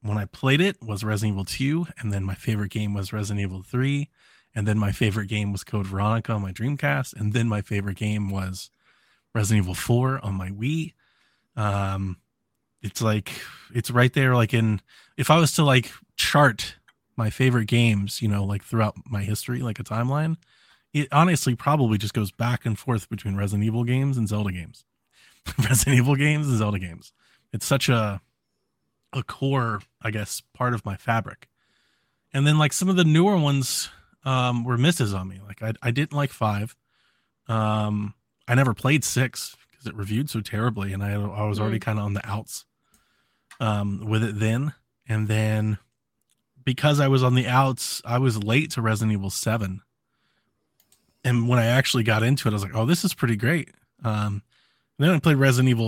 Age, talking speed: 20-39, 190 wpm